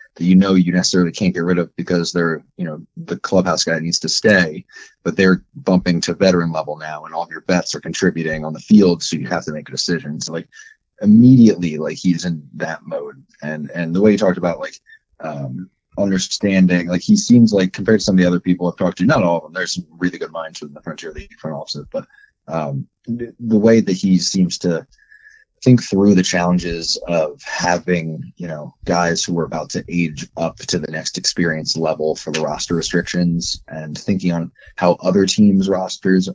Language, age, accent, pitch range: English, 30-49, American, 80-100 Hz